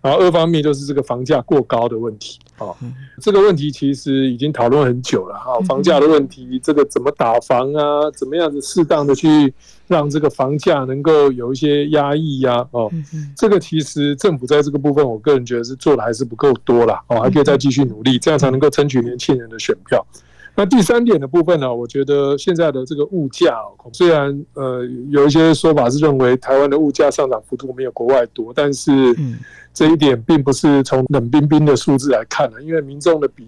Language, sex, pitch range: Chinese, male, 125-150 Hz